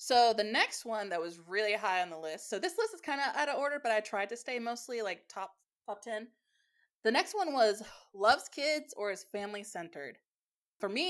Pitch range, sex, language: 185-235 Hz, female, English